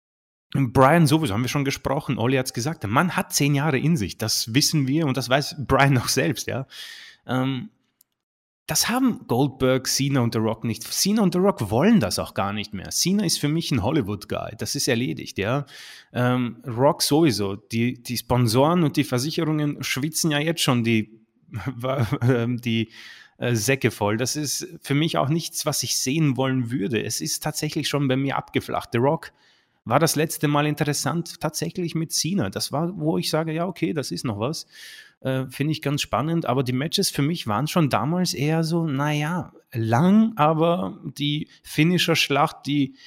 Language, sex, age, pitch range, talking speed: German, male, 30-49, 120-155 Hz, 185 wpm